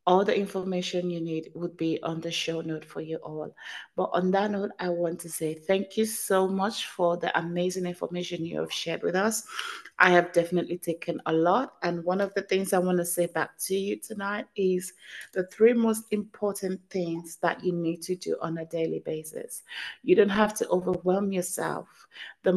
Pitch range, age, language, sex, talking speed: 165-200 Hz, 30-49, English, female, 200 wpm